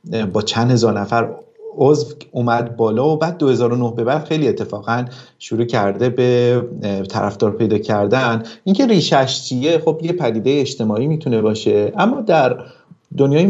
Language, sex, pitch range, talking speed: Persian, male, 110-135 Hz, 140 wpm